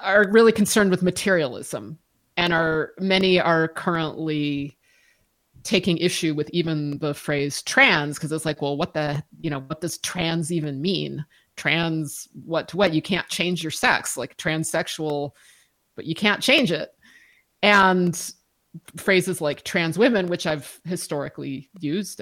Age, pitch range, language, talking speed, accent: 30-49, 155-195 Hz, English, 150 wpm, American